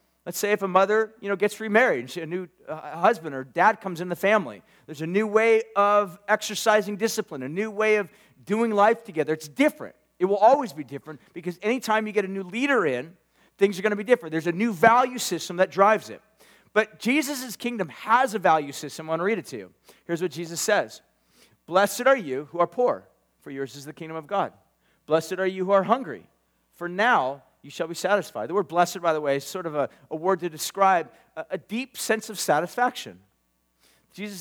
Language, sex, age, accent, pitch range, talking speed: English, male, 40-59, American, 170-225 Hz, 220 wpm